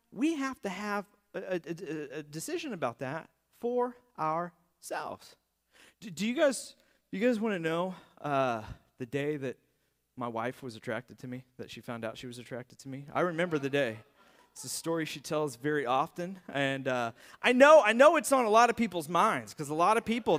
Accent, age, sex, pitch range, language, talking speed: American, 30-49, male, 145-230 Hz, English, 205 wpm